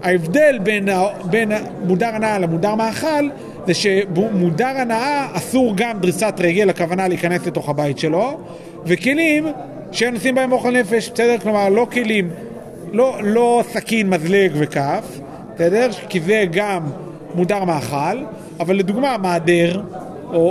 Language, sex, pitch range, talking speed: Hebrew, male, 175-225 Hz, 125 wpm